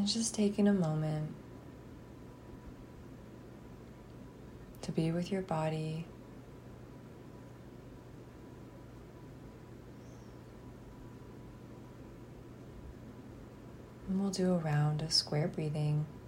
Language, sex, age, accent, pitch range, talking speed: English, female, 20-39, American, 140-180 Hz, 65 wpm